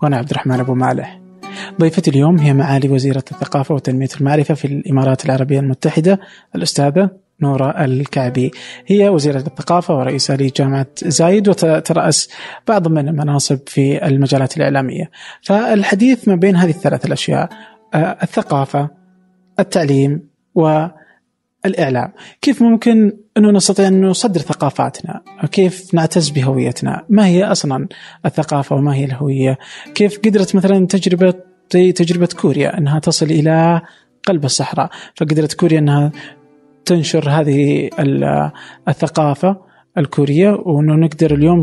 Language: Arabic